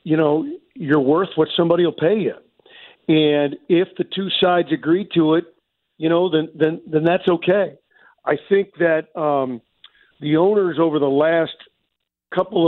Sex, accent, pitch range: male, American, 150-180 Hz